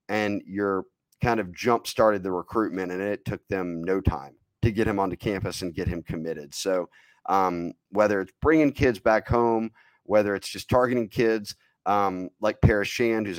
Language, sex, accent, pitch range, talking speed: English, male, American, 95-110 Hz, 180 wpm